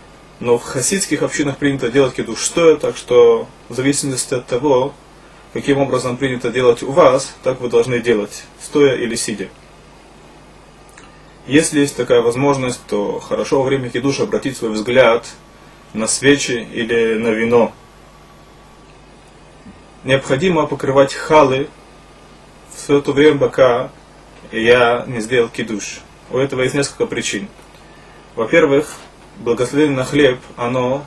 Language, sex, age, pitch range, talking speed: Russian, male, 20-39, 120-145 Hz, 125 wpm